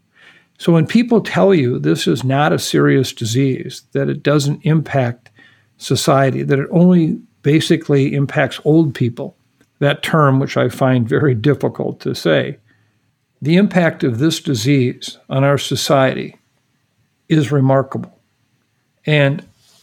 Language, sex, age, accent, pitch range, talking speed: English, male, 50-69, American, 130-155 Hz, 130 wpm